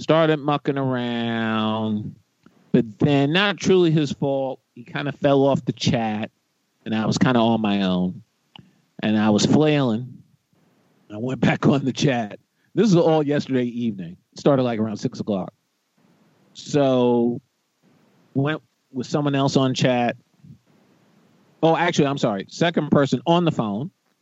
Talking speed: 155 wpm